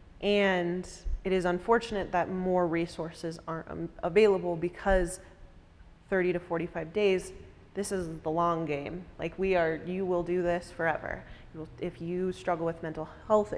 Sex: female